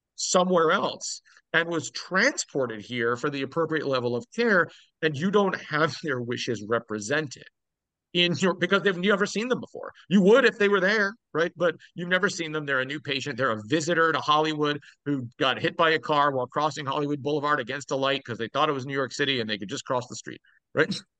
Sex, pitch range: male, 130-180 Hz